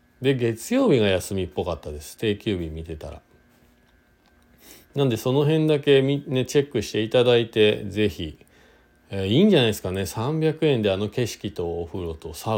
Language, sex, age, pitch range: Japanese, male, 40-59, 85-140 Hz